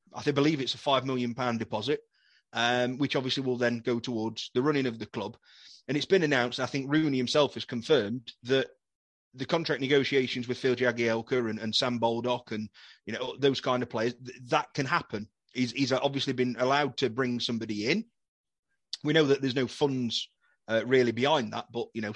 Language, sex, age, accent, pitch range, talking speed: English, male, 30-49, British, 120-160 Hz, 200 wpm